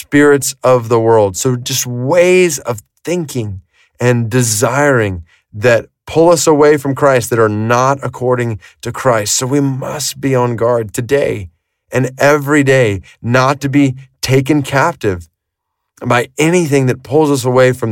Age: 30-49